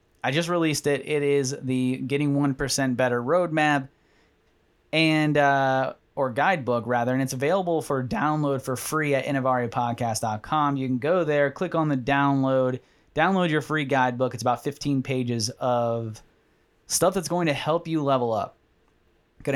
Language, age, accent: English, 20-39, American